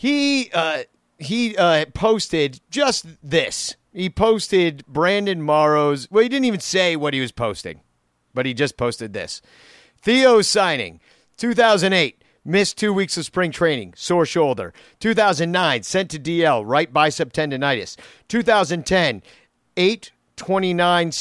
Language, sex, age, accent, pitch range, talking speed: English, male, 50-69, American, 150-200 Hz, 125 wpm